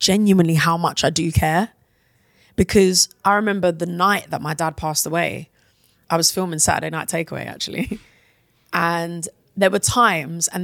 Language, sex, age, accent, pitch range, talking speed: English, female, 20-39, British, 165-195 Hz, 160 wpm